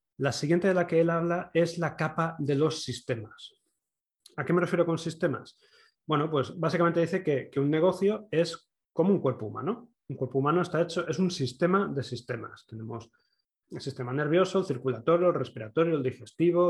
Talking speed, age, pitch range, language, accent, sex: 185 wpm, 30-49, 130-175 Hz, Spanish, Spanish, male